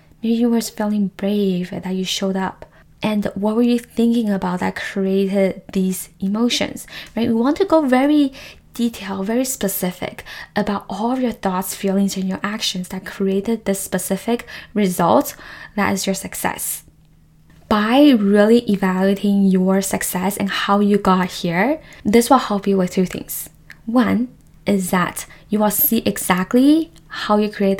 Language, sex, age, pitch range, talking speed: English, female, 10-29, 190-220 Hz, 155 wpm